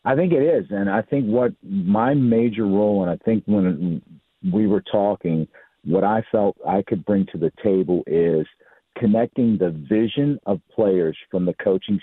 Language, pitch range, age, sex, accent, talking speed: English, 90-105 Hz, 50-69, male, American, 180 wpm